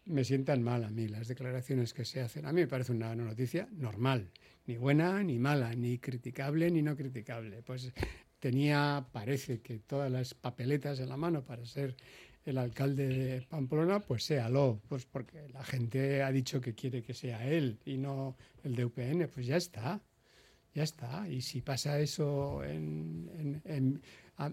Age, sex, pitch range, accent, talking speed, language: 60-79, male, 125-155 Hz, Spanish, 175 wpm, Spanish